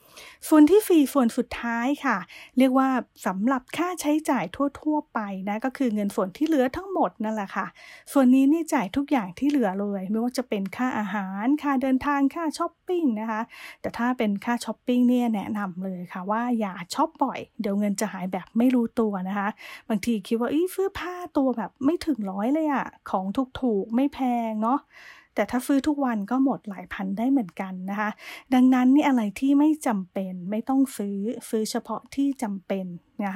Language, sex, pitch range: English, female, 205-275 Hz